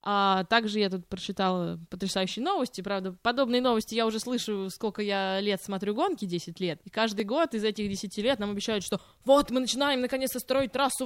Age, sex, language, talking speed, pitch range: 20-39, female, Russian, 195 wpm, 180-245 Hz